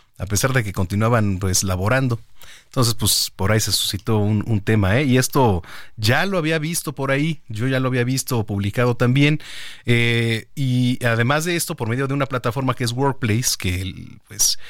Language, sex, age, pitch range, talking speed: Spanish, male, 40-59, 100-130 Hz, 190 wpm